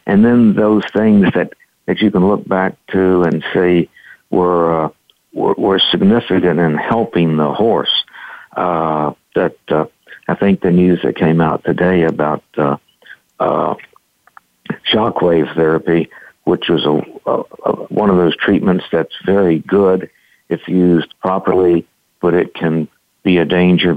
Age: 60-79